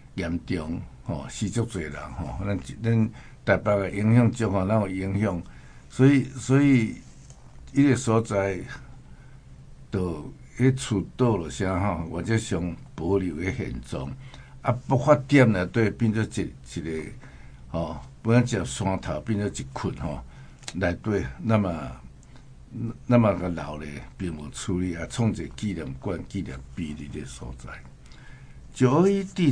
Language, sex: Chinese, male